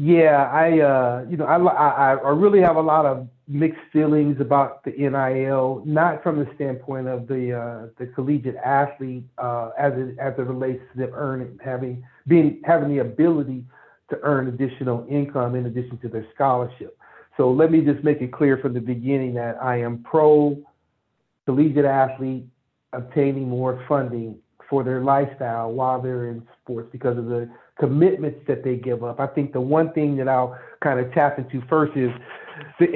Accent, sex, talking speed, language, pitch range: American, male, 175 wpm, English, 130-155 Hz